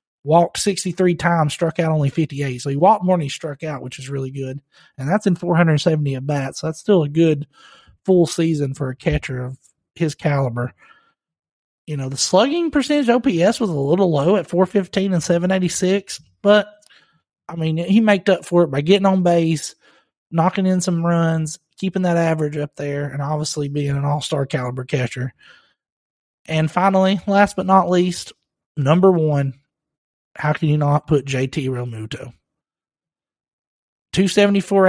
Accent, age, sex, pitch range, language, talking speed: American, 30-49, male, 150-190 Hz, English, 165 wpm